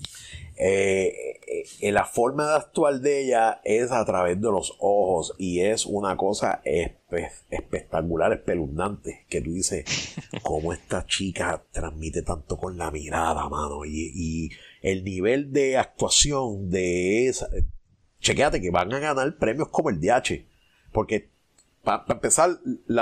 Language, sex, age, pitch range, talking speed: Spanish, male, 30-49, 90-130 Hz, 150 wpm